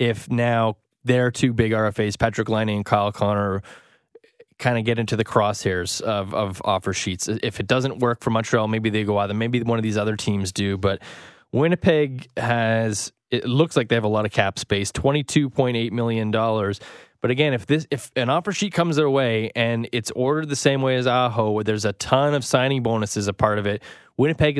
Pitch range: 110-135 Hz